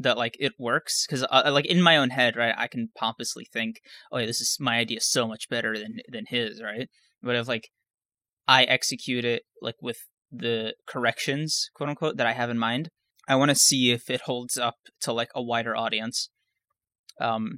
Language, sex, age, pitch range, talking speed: English, male, 20-39, 115-135 Hz, 205 wpm